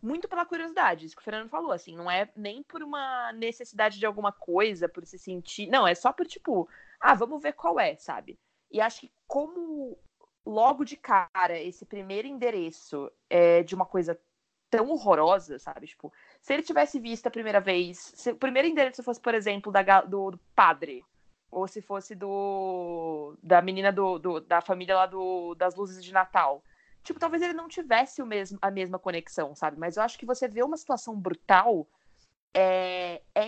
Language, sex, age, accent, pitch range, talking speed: Portuguese, female, 20-39, Brazilian, 185-270 Hz, 185 wpm